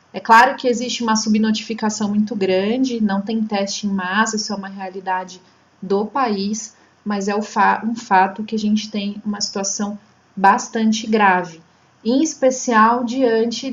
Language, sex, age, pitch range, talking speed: Portuguese, female, 30-49, 205-240 Hz, 150 wpm